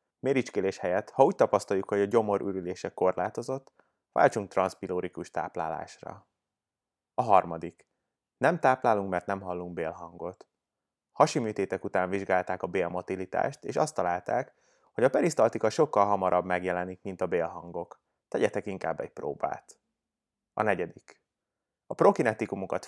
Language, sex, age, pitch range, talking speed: Hungarian, male, 30-49, 90-105 Hz, 120 wpm